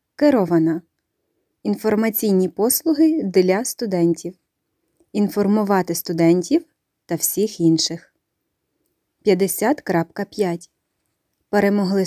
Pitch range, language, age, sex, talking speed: 180-235 Hz, English, 20-39, female, 60 wpm